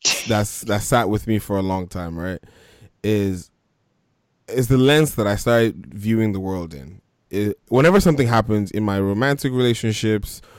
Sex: male